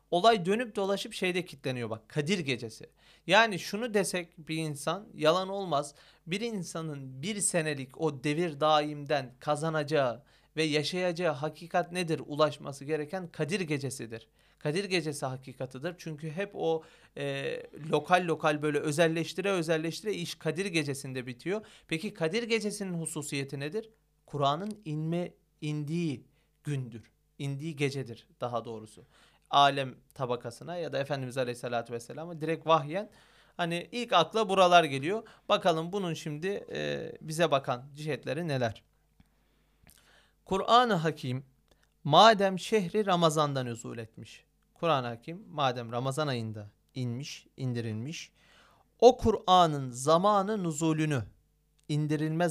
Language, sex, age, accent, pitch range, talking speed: Turkish, male, 40-59, native, 135-180 Hz, 115 wpm